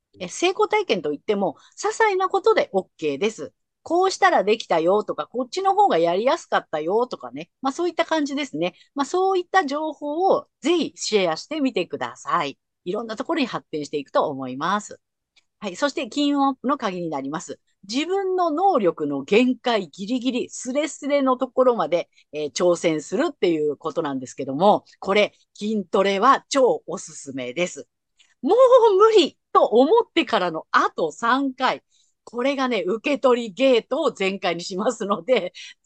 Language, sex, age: Japanese, female, 50-69